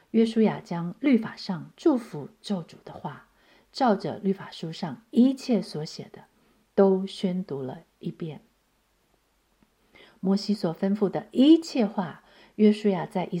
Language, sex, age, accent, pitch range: Chinese, female, 50-69, native, 160-205 Hz